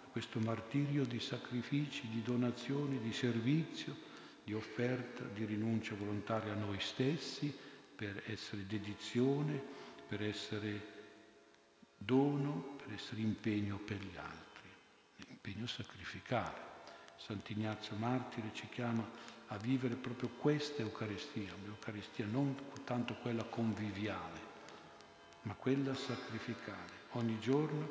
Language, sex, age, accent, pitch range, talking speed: Italian, male, 50-69, native, 105-125 Hz, 110 wpm